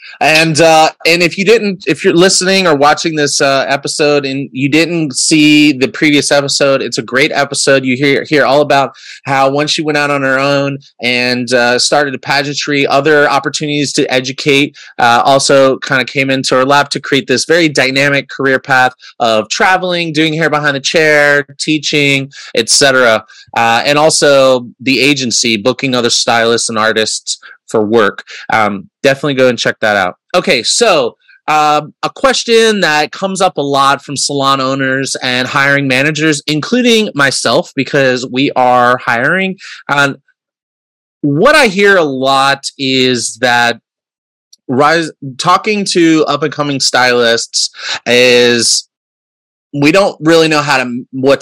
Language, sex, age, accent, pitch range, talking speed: English, male, 20-39, American, 130-155 Hz, 160 wpm